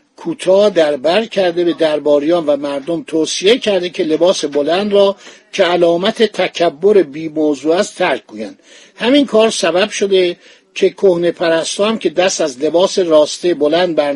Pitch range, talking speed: 160-205 Hz, 155 wpm